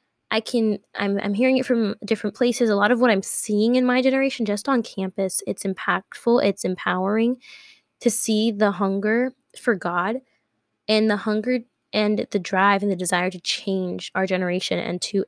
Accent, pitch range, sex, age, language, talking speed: American, 195-225 Hz, female, 10-29, English, 180 wpm